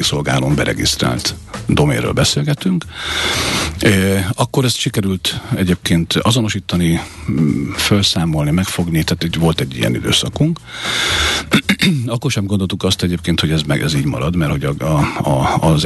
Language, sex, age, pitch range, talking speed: Hungarian, male, 50-69, 85-120 Hz, 130 wpm